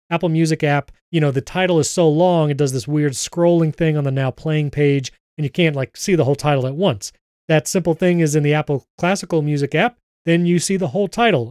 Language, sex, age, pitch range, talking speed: English, male, 30-49, 140-175 Hz, 245 wpm